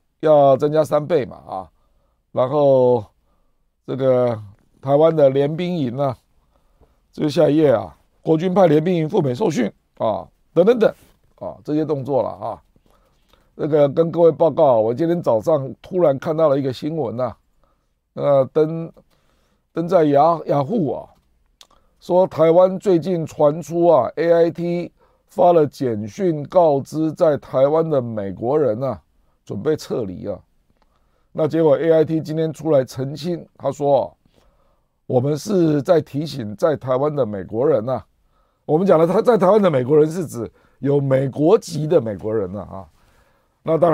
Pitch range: 125-165 Hz